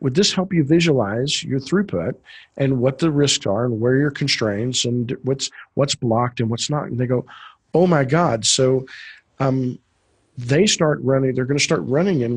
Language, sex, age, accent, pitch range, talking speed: English, male, 50-69, American, 120-145 Hz, 195 wpm